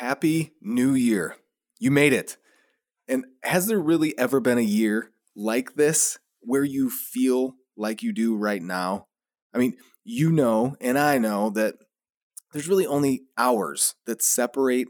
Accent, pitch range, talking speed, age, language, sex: American, 110-145 Hz, 155 wpm, 30-49, English, male